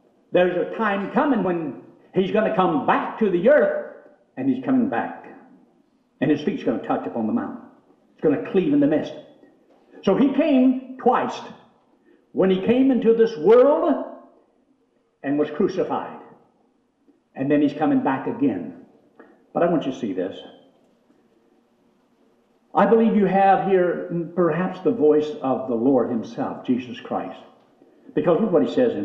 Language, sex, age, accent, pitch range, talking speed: English, male, 60-79, American, 165-255 Hz, 165 wpm